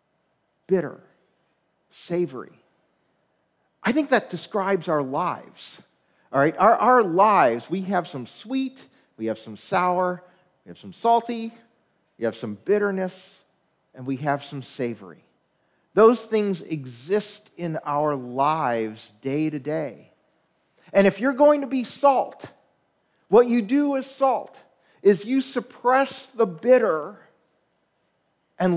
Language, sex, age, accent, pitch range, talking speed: English, male, 40-59, American, 145-205 Hz, 125 wpm